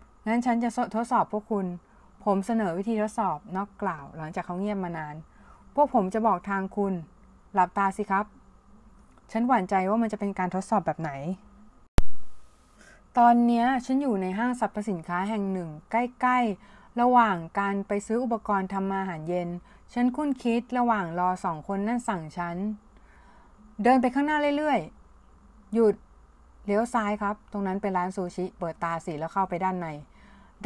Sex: female